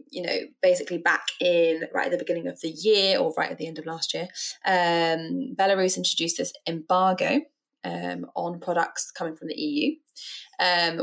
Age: 20-39